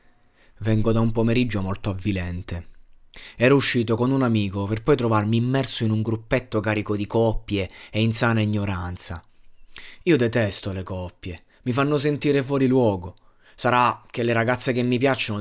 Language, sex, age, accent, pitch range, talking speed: Italian, male, 20-39, native, 105-130 Hz, 160 wpm